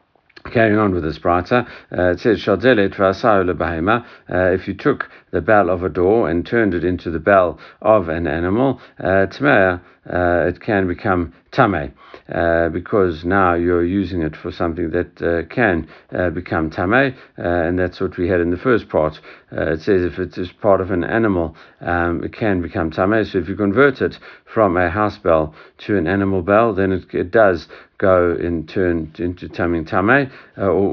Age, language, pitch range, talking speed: 60-79, English, 85-105 Hz, 185 wpm